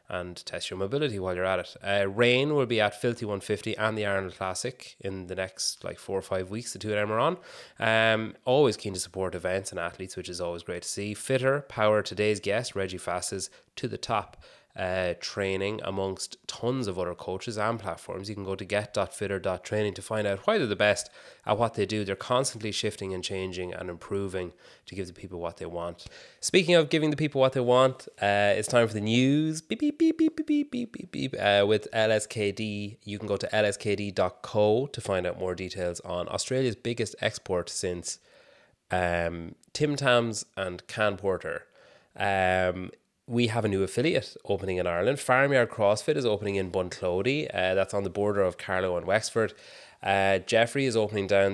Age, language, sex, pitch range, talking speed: 20-39, English, male, 95-115 Hz, 200 wpm